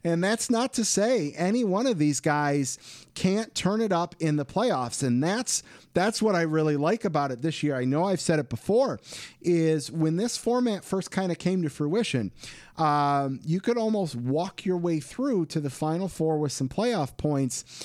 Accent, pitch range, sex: American, 145-200 Hz, male